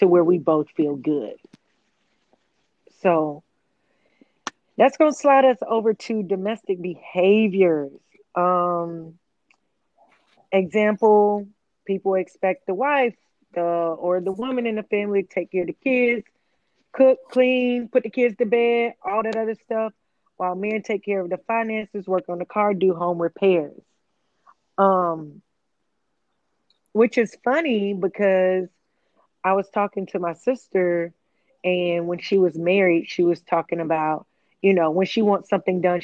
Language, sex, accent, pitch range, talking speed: English, female, American, 180-225 Hz, 145 wpm